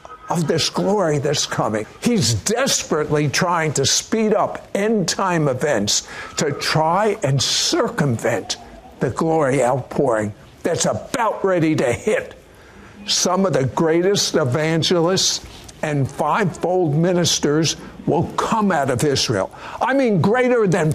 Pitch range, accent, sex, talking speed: 145-200 Hz, American, male, 125 wpm